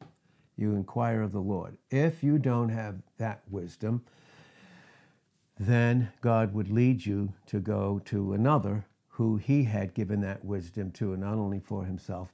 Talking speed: 155 wpm